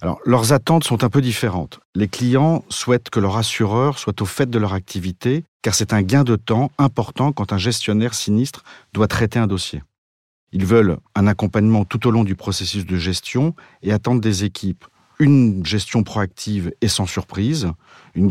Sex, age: male, 50-69